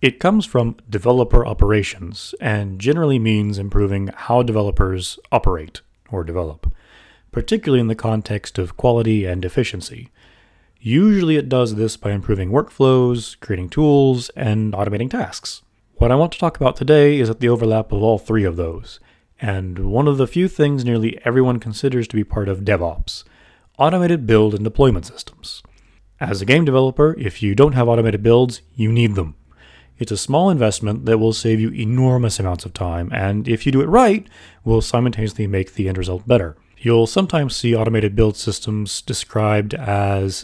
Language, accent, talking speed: English, American, 170 wpm